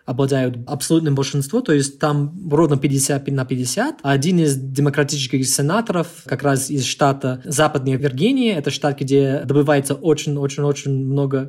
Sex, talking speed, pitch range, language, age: male, 135 wpm, 135-155 Hz, Russian, 20-39